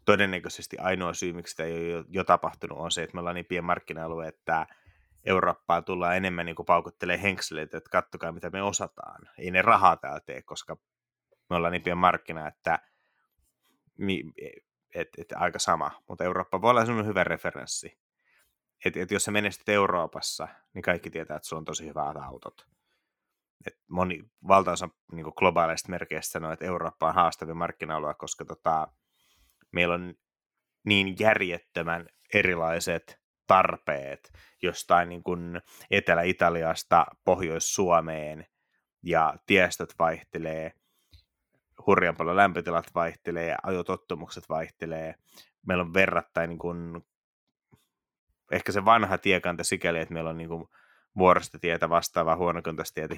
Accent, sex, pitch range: native, male, 80-90 Hz